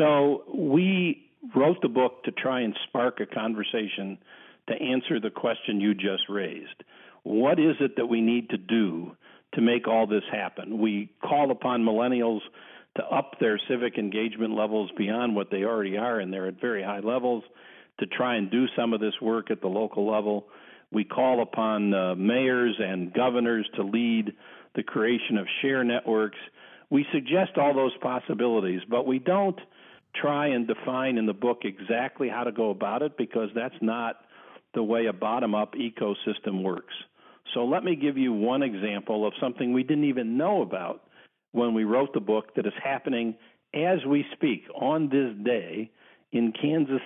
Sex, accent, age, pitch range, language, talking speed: male, American, 50-69, 105-135 Hz, English, 175 wpm